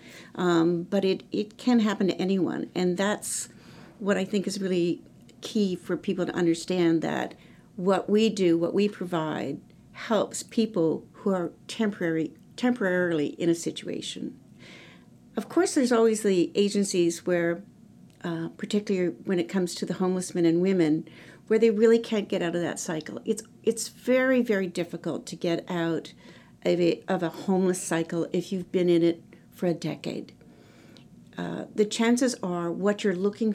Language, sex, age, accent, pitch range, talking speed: English, female, 60-79, American, 170-205 Hz, 165 wpm